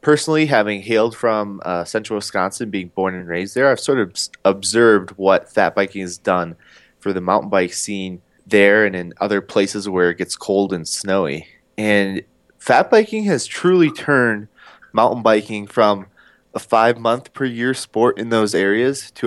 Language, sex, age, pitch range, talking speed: English, male, 20-39, 100-120 Hz, 165 wpm